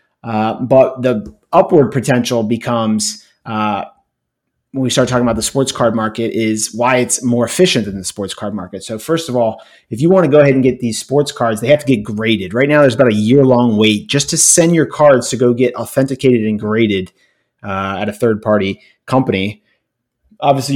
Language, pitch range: English, 110-130 Hz